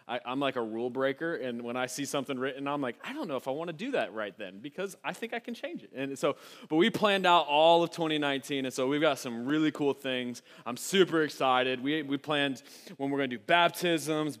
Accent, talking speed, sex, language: American, 250 wpm, male, English